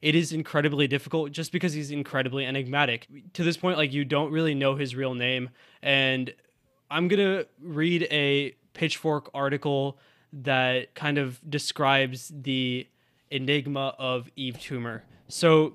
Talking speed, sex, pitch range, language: 145 wpm, male, 130-155 Hz, English